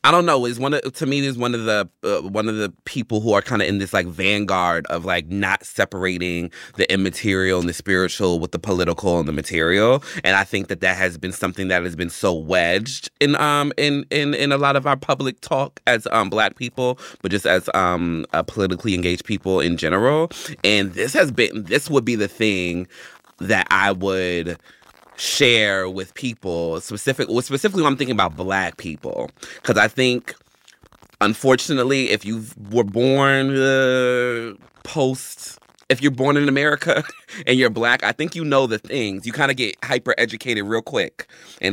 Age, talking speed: 20-39, 195 wpm